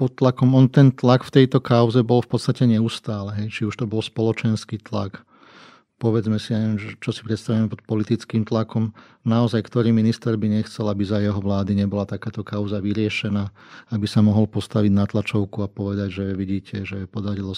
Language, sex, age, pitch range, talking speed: Slovak, male, 40-59, 105-115 Hz, 180 wpm